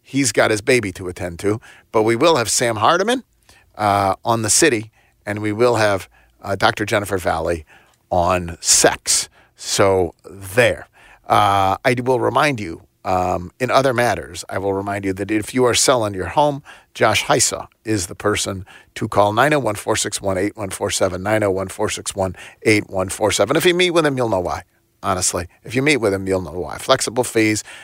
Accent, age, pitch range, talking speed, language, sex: American, 40-59, 95-130 Hz, 165 wpm, English, male